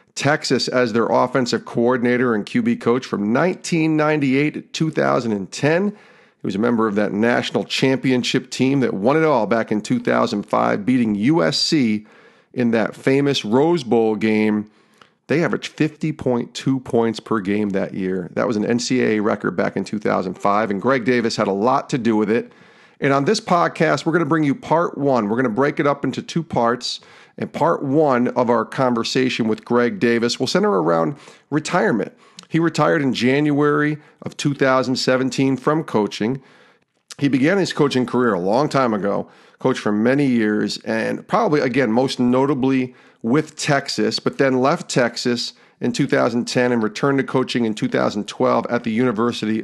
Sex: male